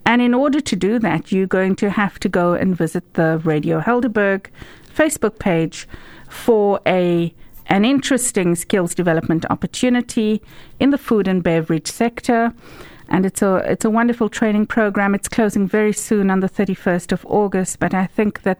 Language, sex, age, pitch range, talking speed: English, female, 50-69, 165-215 Hz, 175 wpm